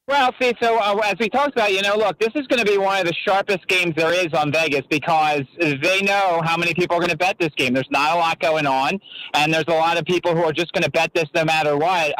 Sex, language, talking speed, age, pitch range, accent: male, English, 290 wpm, 30-49, 160-200 Hz, American